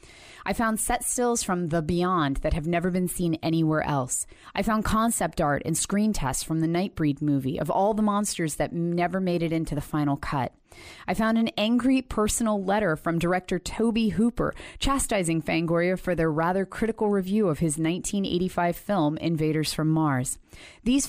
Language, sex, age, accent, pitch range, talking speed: English, female, 30-49, American, 155-200 Hz, 175 wpm